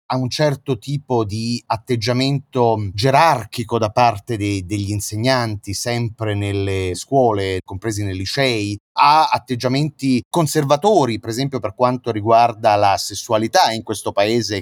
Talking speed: 125 wpm